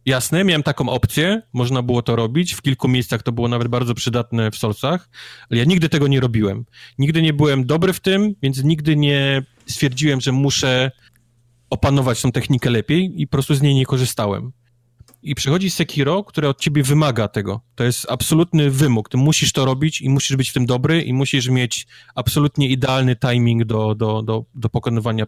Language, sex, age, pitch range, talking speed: Polish, male, 30-49, 120-145 Hz, 190 wpm